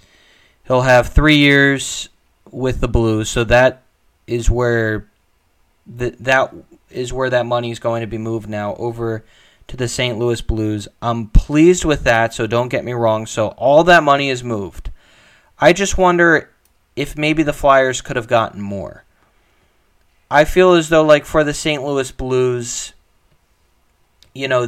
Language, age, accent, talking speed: English, 20-39, American, 165 wpm